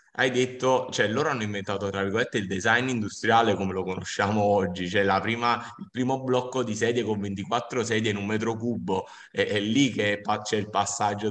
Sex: male